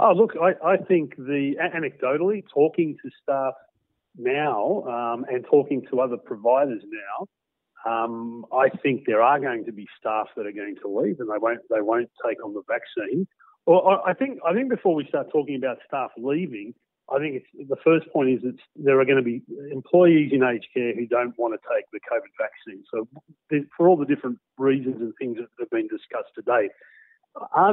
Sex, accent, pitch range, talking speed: male, Australian, 125-170 Hz, 200 wpm